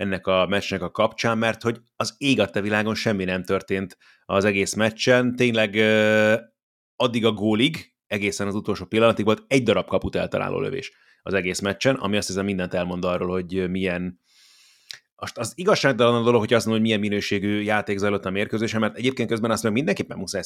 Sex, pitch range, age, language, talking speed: male, 95-110 Hz, 30-49, Hungarian, 190 wpm